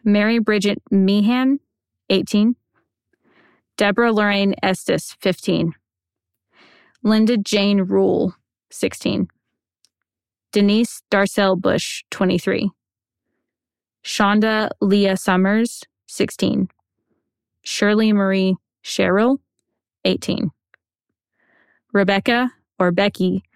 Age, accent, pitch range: 20-39, American, 185-215 Hz